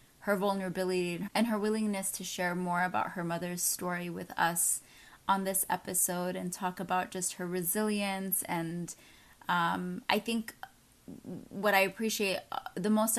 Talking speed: 145 wpm